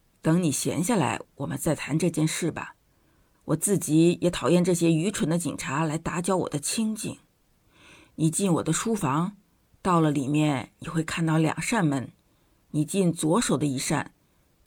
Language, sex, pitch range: Chinese, female, 160-240 Hz